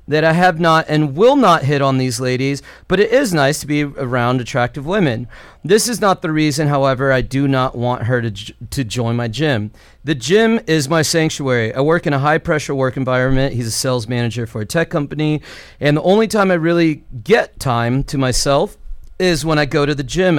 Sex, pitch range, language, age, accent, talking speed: male, 125-165 Hz, English, 40-59, American, 220 wpm